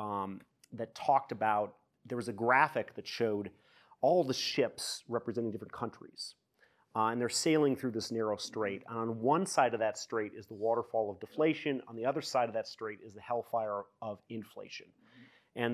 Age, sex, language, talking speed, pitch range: 30-49, male, English, 185 wpm, 110-140 Hz